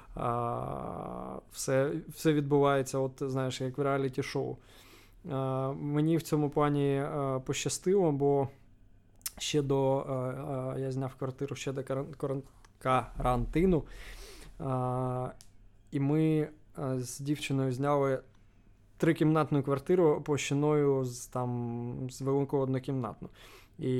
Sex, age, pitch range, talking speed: male, 20-39, 125-140 Hz, 90 wpm